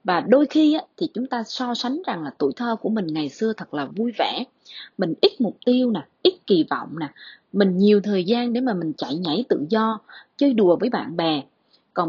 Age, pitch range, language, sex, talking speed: 20-39, 190-275 Hz, Vietnamese, female, 230 wpm